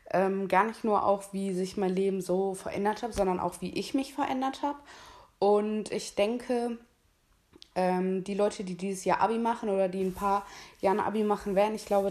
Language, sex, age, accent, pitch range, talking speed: German, female, 20-39, German, 185-215 Hz, 205 wpm